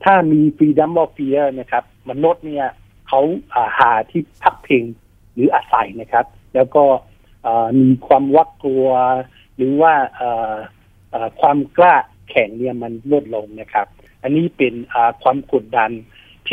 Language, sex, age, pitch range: Thai, male, 60-79, 110-140 Hz